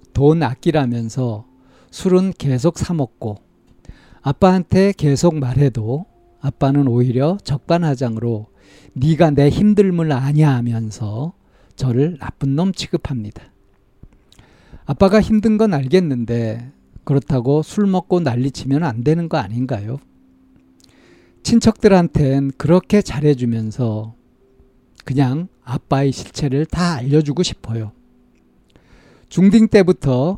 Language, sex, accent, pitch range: Korean, male, native, 110-155 Hz